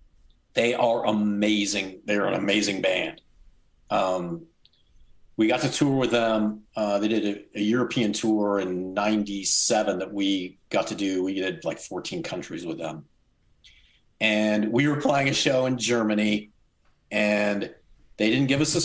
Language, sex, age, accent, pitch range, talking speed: English, male, 40-59, American, 95-115 Hz, 155 wpm